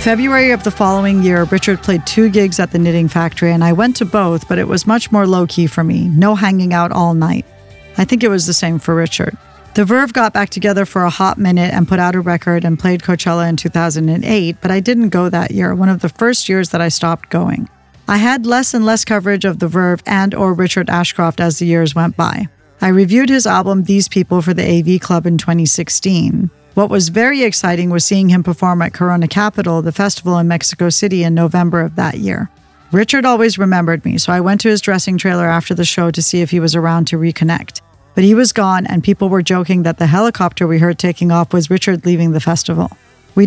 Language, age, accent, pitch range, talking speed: English, 40-59, American, 170-195 Hz, 230 wpm